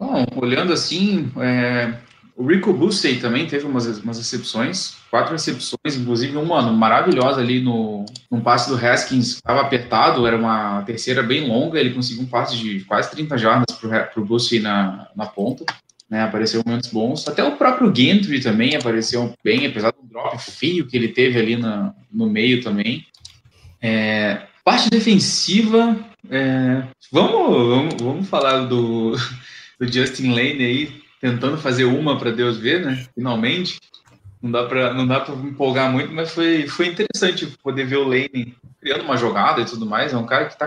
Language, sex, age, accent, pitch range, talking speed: Portuguese, male, 20-39, Brazilian, 115-140 Hz, 170 wpm